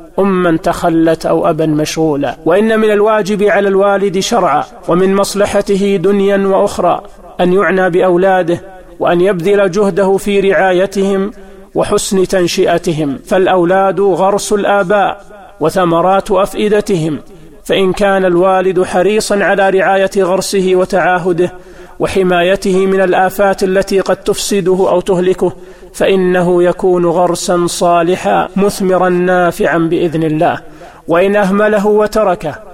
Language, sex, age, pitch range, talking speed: Arabic, male, 40-59, 180-200 Hz, 105 wpm